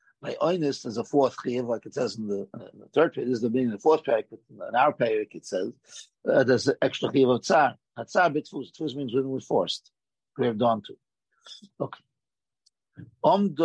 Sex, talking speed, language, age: male, 210 wpm, English, 50-69